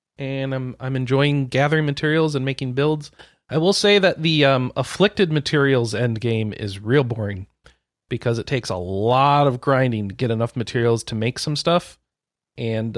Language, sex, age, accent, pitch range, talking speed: English, male, 40-59, American, 110-140 Hz, 175 wpm